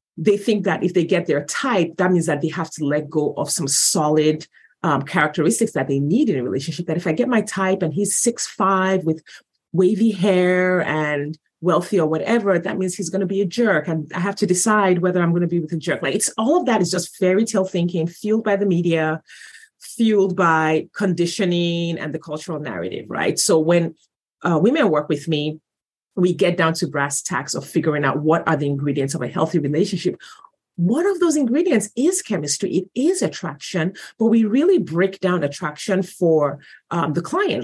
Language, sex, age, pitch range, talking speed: English, female, 30-49, 155-190 Hz, 205 wpm